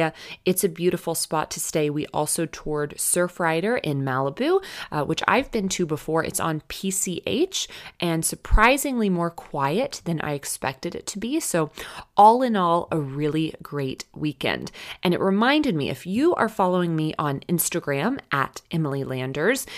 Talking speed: 160 wpm